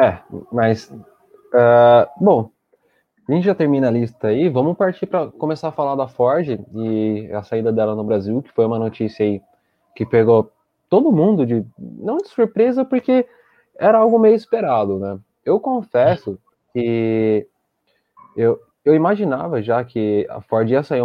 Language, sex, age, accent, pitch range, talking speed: Portuguese, male, 20-39, Brazilian, 110-150 Hz, 160 wpm